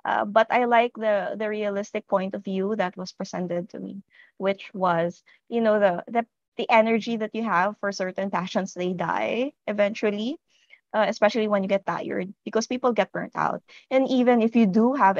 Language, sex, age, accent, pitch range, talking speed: English, female, 20-39, Filipino, 190-225 Hz, 195 wpm